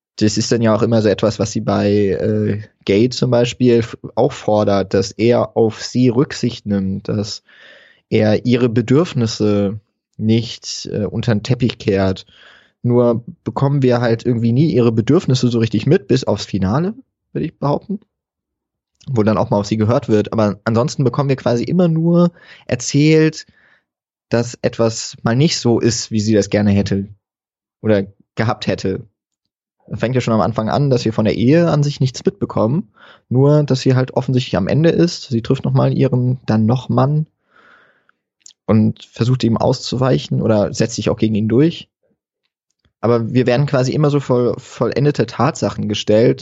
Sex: male